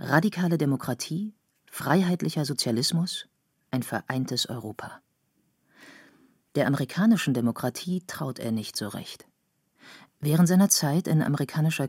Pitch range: 125-175 Hz